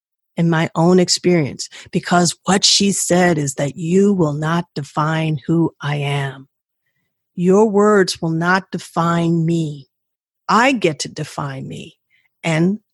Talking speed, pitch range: 135 wpm, 160-205 Hz